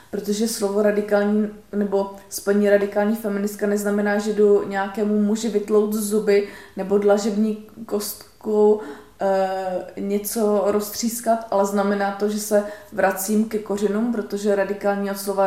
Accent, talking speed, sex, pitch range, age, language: native, 130 wpm, female, 200-215 Hz, 20-39, Czech